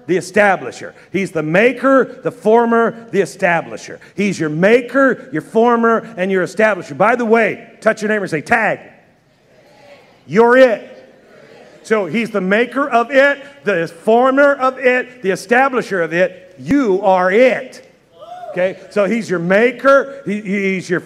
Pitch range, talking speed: 145-210 Hz, 150 wpm